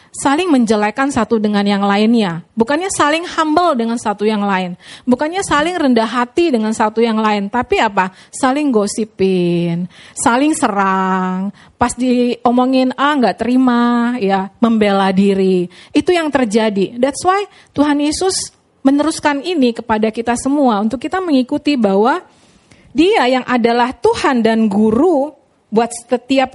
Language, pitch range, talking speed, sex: Indonesian, 210-285 Hz, 135 wpm, female